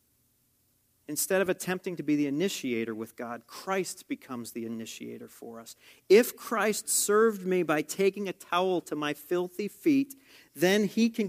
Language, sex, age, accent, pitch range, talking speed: English, male, 40-59, American, 145-190 Hz, 160 wpm